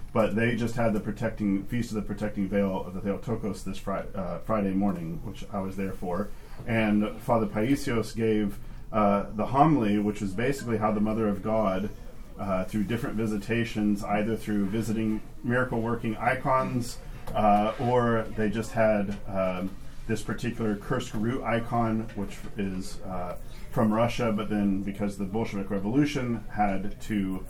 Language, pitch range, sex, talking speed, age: English, 100-115 Hz, male, 160 wpm, 40-59